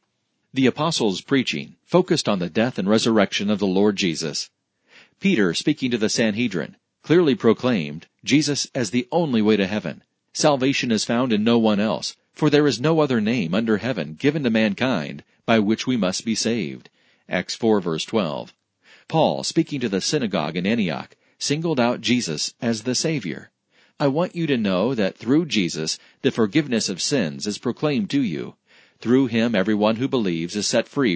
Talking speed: 175 wpm